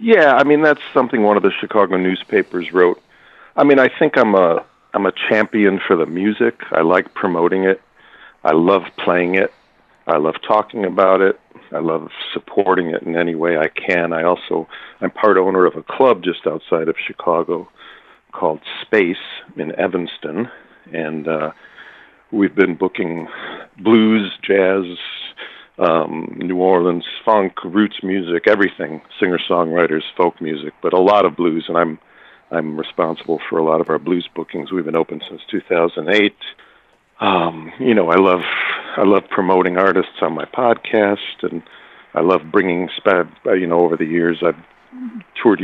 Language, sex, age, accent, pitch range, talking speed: English, male, 50-69, American, 85-100 Hz, 160 wpm